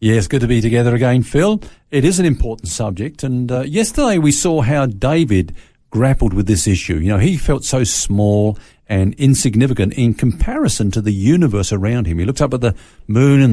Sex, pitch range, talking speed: male, 100-145 Hz, 200 wpm